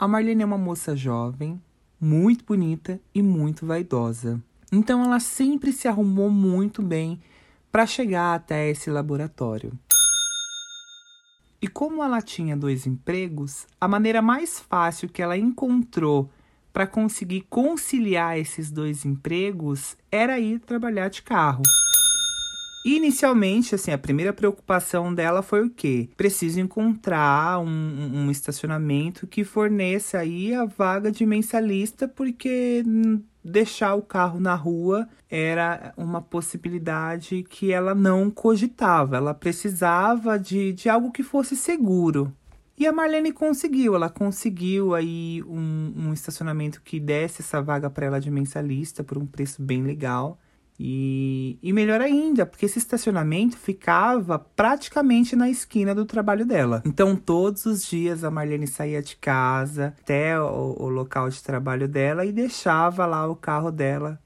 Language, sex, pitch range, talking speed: Portuguese, male, 150-220 Hz, 140 wpm